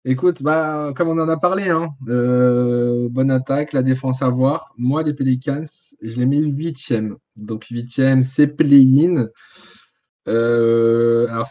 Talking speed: 140 wpm